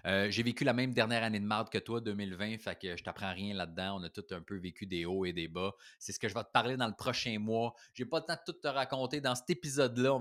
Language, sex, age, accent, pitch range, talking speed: French, male, 30-49, Canadian, 100-125 Hz, 305 wpm